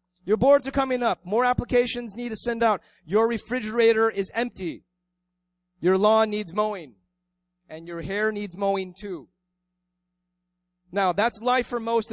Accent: American